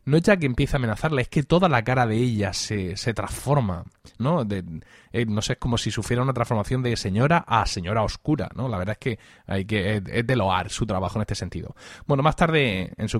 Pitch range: 110-145 Hz